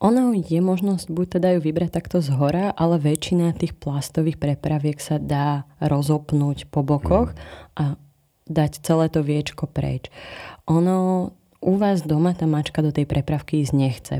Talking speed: 150 wpm